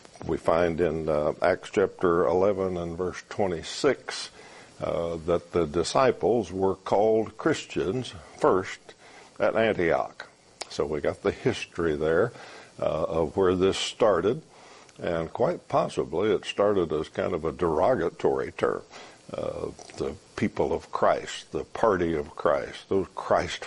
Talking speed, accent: 135 wpm, American